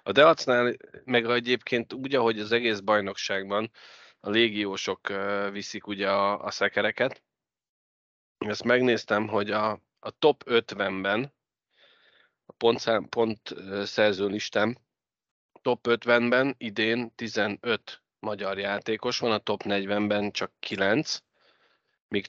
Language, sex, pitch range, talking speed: Hungarian, male, 100-115 Hz, 110 wpm